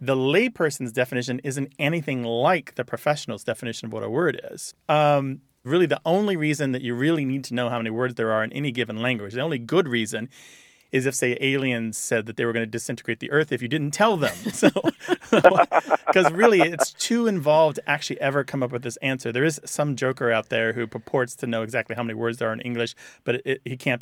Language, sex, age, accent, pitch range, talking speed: English, male, 30-49, American, 120-160 Hz, 225 wpm